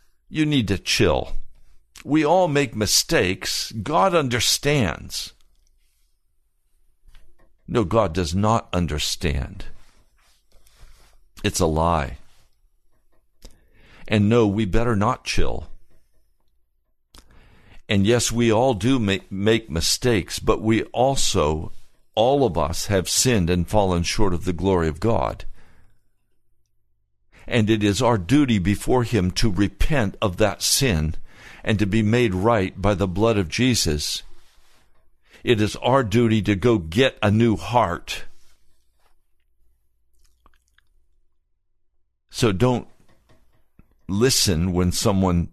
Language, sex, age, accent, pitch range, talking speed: English, male, 60-79, American, 85-120 Hz, 110 wpm